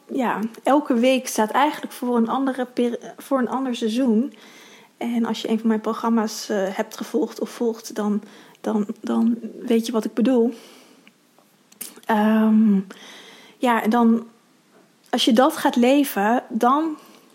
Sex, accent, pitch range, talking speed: female, Dutch, 220-245 Hz, 130 wpm